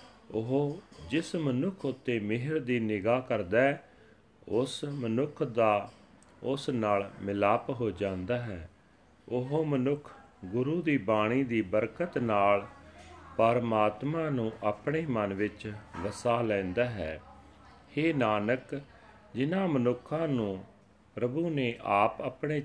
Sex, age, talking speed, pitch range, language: male, 40-59, 115 wpm, 100-130 Hz, Punjabi